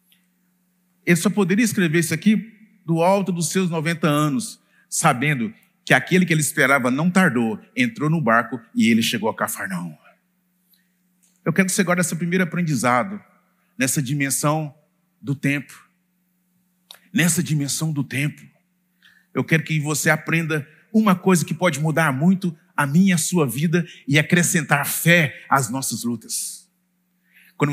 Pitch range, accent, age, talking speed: 145-190 Hz, Brazilian, 40-59, 145 wpm